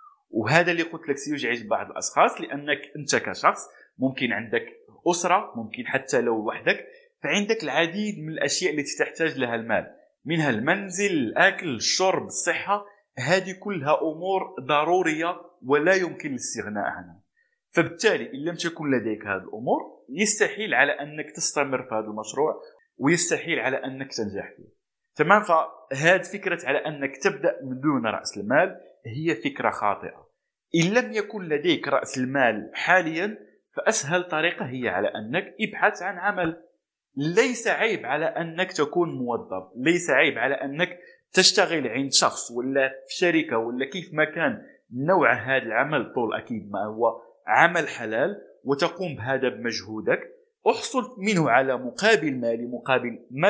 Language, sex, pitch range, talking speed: Arabic, male, 135-190 Hz, 140 wpm